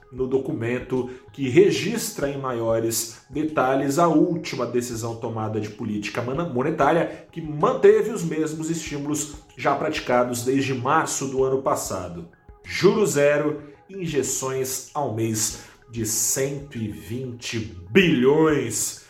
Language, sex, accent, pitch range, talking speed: Portuguese, male, Brazilian, 115-150 Hz, 105 wpm